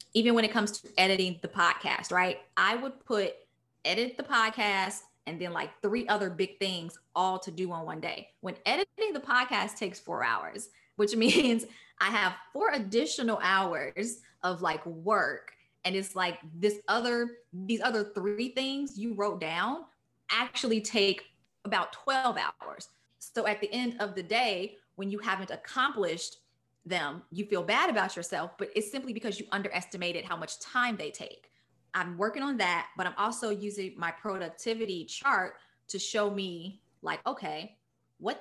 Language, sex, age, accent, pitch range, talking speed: English, female, 20-39, American, 180-230 Hz, 165 wpm